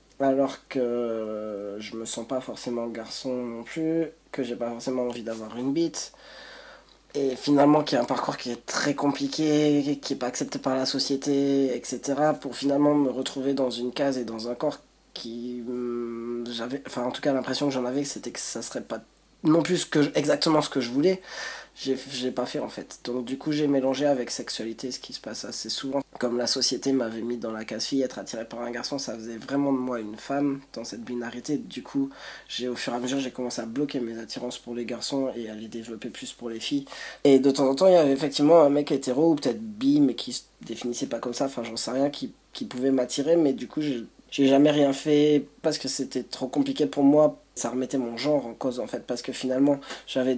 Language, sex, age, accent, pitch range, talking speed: French, male, 20-39, French, 120-145 Hz, 230 wpm